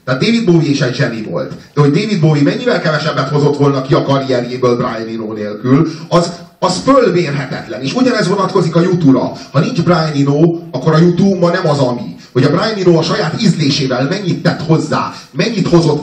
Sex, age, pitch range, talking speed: male, 30-49, 125-165 Hz, 190 wpm